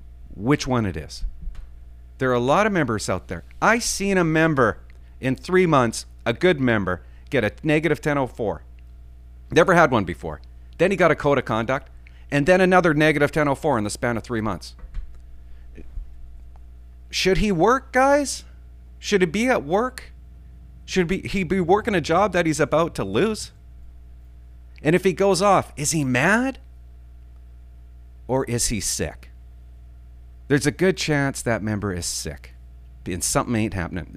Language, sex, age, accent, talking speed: English, male, 40-59, American, 165 wpm